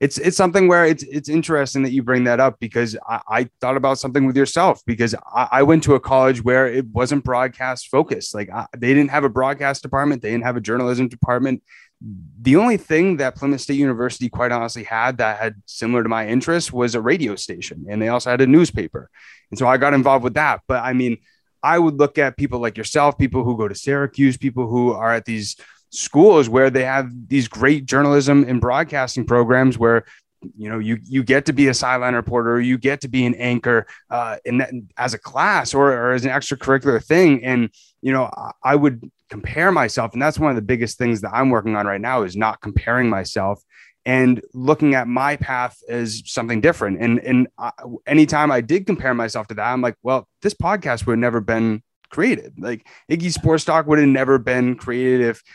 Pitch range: 115-135 Hz